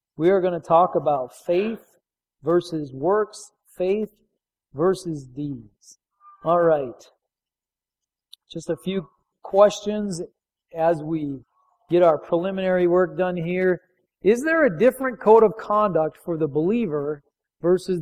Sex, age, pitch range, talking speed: male, 40-59, 170-225 Hz, 120 wpm